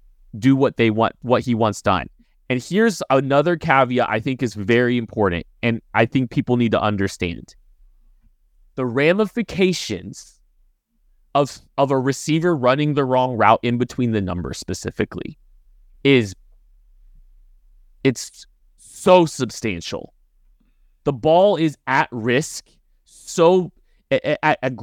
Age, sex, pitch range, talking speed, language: 30-49, male, 120-165 Hz, 120 wpm, English